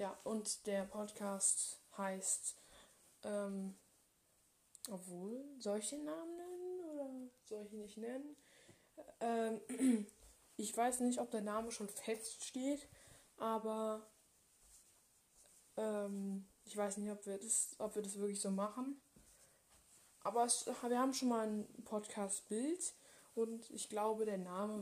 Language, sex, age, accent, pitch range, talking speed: German, female, 10-29, German, 200-225 Hz, 130 wpm